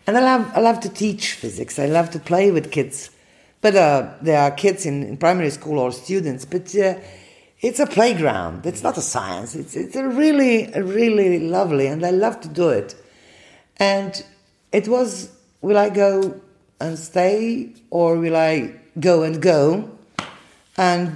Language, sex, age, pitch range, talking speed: English, female, 50-69, 130-190 Hz, 175 wpm